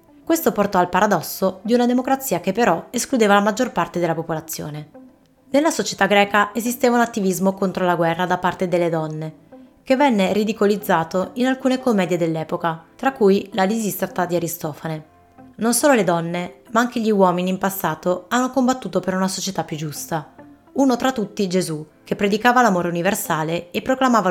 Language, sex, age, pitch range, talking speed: Italian, female, 20-39, 175-235 Hz, 170 wpm